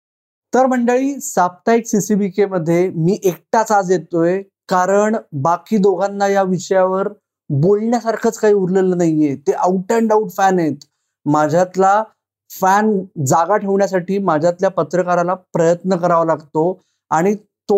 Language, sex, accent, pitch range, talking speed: Marathi, male, native, 170-210 Hz, 90 wpm